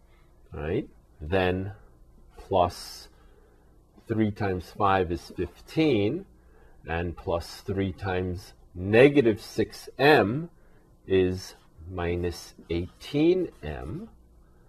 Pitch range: 75-105 Hz